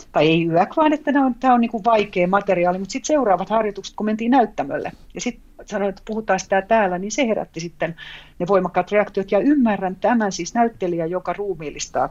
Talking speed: 200 wpm